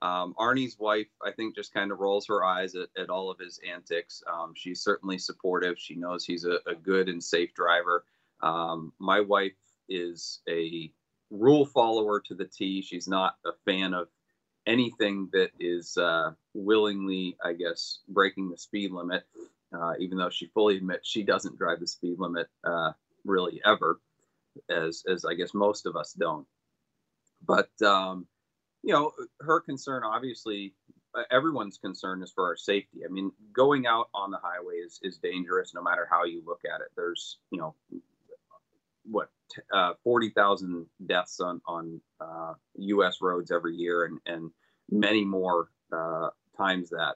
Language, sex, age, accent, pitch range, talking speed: English, male, 30-49, American, 90-105 Hz, 165 wpm